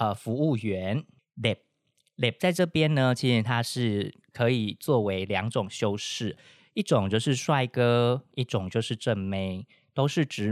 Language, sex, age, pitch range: Chinese, male, 20-39, 105-140 Hz